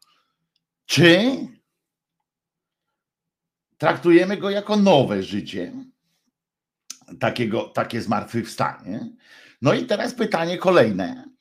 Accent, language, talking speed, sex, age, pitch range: native, Polish, 75 wpm, male, 50-69, 115-175 Hz